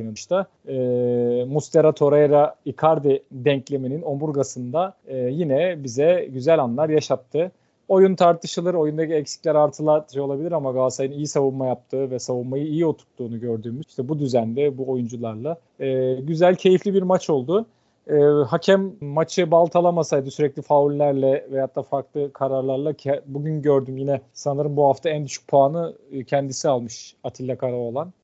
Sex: male